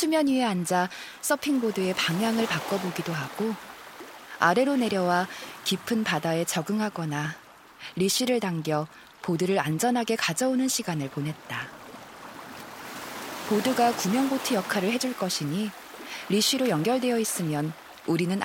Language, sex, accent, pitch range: Korean, female, native, 175-255 Hz